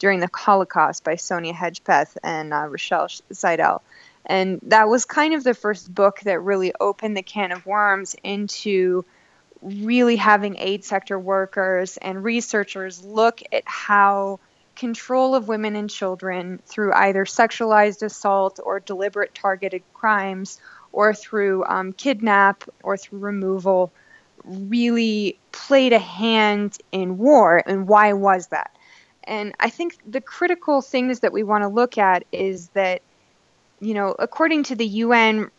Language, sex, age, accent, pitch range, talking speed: English, female, 20-39, American, 190-225 Hz, 145 wpm